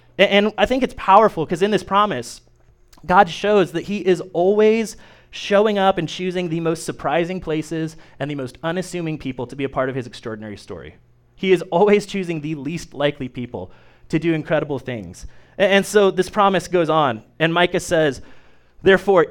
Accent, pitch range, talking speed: American, 130-175 Hz, 180 wpm